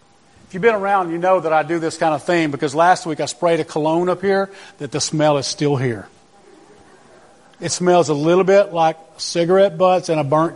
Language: English